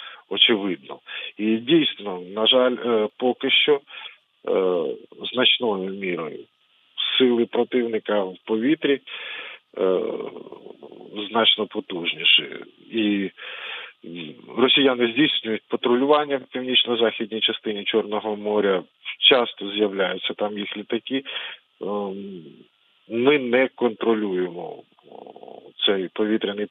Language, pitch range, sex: Ukrainian, 105-125 Hz, male